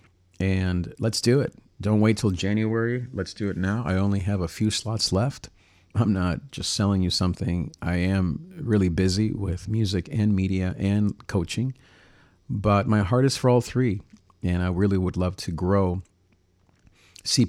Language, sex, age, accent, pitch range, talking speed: English, male, 50-69, American, 90-110 Hz, 170 wpm